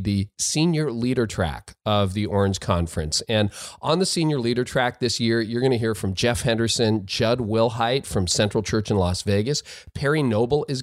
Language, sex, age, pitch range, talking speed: English, male, 40-59, 105-130 Hz, 190 wpm